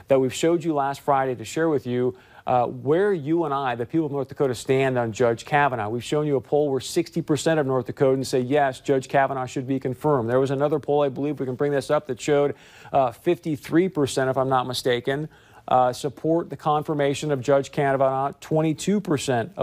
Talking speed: 205 wpm